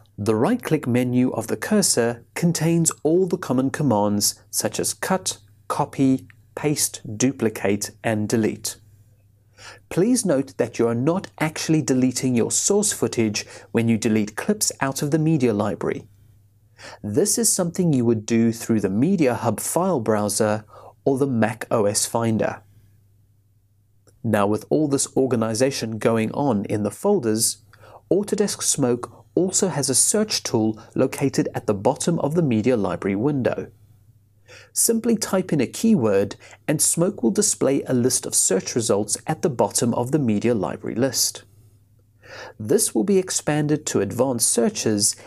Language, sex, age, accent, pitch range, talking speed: English, male, 30-49, British, 105-150 Hz, 145 wpm